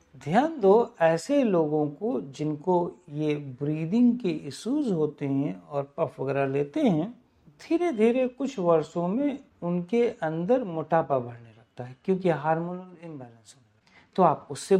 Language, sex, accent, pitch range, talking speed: Hindi, male, native, 145-225 Hz, 140 wpm